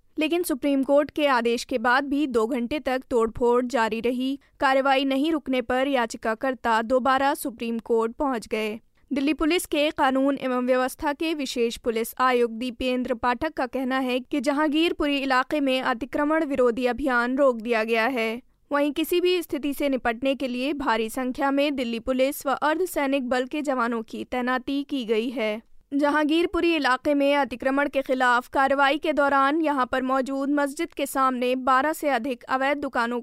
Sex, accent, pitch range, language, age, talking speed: female, native, 250-290 Hz, Hindi, 20-39, 170 wpm